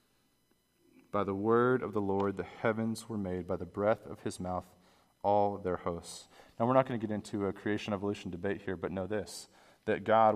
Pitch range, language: 95-115 Hz, English